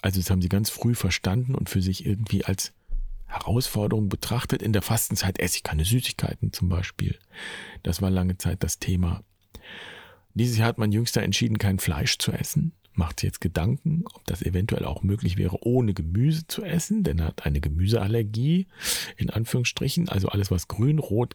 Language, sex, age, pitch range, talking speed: German, male, 40-59, 95-130 Hz, 185 wpm